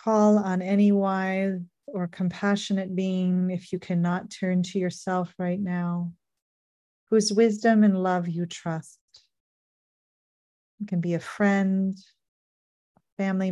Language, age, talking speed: English, 40-59, 120 wpm